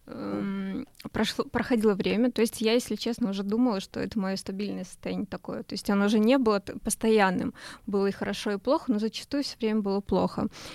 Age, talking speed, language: 20-39, 190 wpm, Russian